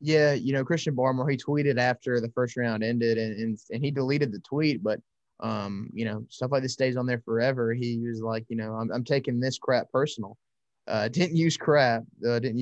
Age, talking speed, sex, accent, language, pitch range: 20-39, 220 wpm, male, American, English, 115-130 Hz